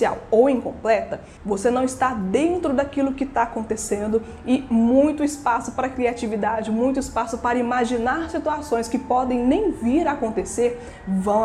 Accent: Brazilian